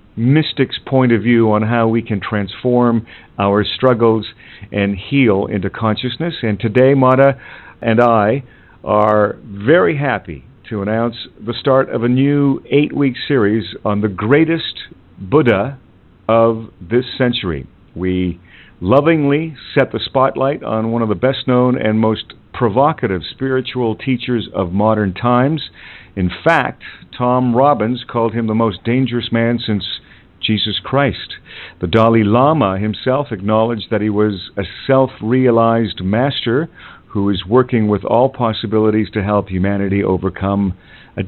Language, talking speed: English, 135 wpm